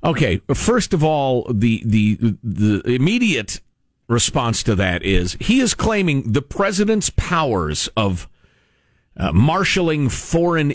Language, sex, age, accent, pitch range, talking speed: English, male, 50-69, American, 100-155 Hz, 125 wpm